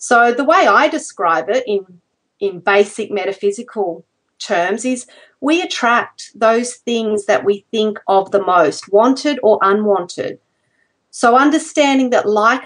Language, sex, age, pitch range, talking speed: English, female, 40-59, 210-280 Hz, 135 wpm